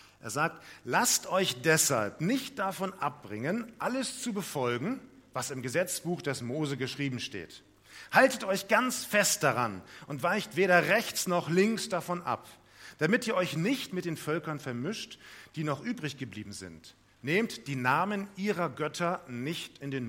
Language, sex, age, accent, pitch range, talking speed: German, male, 40-59, German, 125-170 Hz, 155 wpm